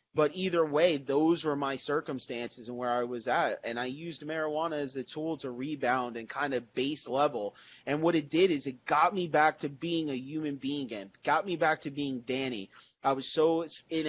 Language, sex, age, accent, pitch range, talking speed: English, male, 30-49, American, 130-155 Hz, 215 wpm